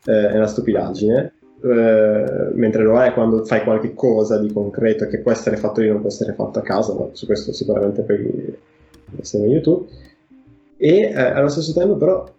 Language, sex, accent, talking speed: Italian, male, native, 190 wpm